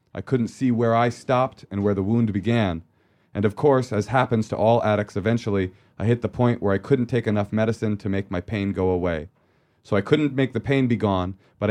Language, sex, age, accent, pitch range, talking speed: English, male, 30-49, American, 100-120 Hz, 230 wpm